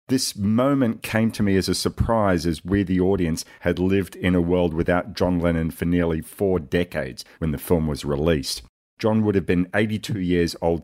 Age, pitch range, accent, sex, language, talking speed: 40-59, 80-95 Hz, Australian, male, English, 200 wpm